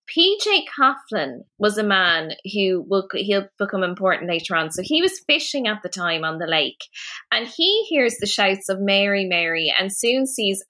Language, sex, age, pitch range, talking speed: English, female, 20-39, 175-220 Hz, 180 wpm